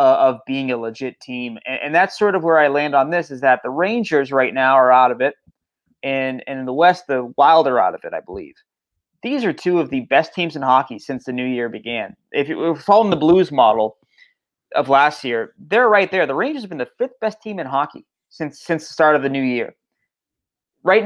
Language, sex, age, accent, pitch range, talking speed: English, male, 20-39, American, 130-180 Hz, 240 wpm